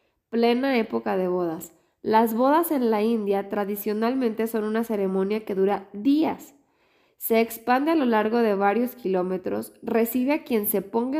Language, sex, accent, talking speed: Spanish, female, Mexican, 155 wpm